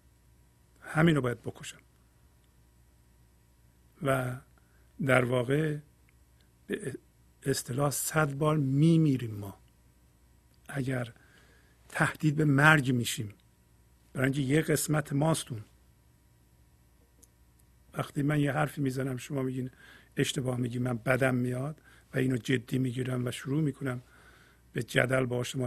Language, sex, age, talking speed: Persian, male, 50-69, 105 wpm